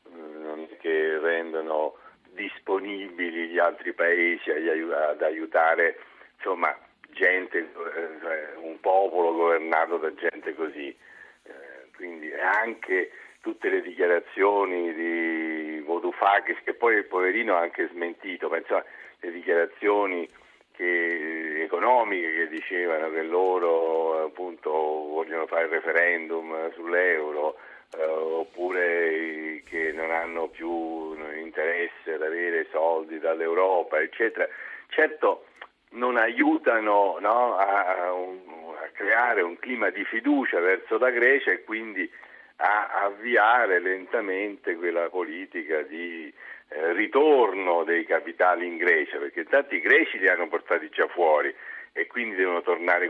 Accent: native